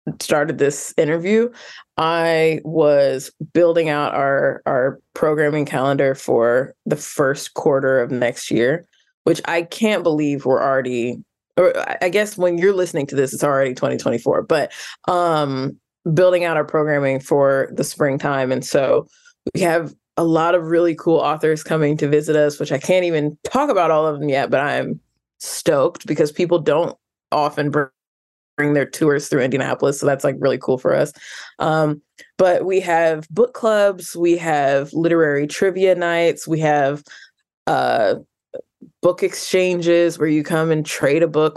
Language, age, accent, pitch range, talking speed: English, 20-39, American, 145-170 Hz, 160 wpm